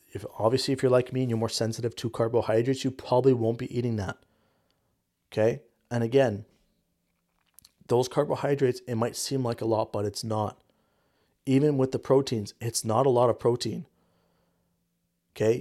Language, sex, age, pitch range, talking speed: English, male, 30-49, 110-130 Hz, 165 wpm